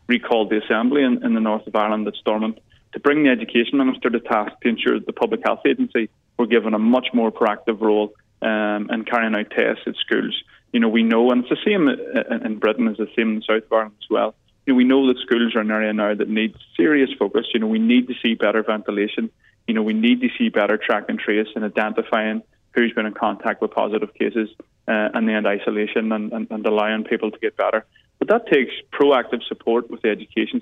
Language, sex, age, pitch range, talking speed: English, male, 20-39, 105-120 Hz, 235 wpm